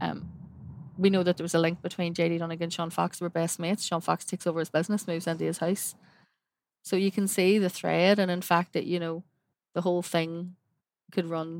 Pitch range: 165-180 Hz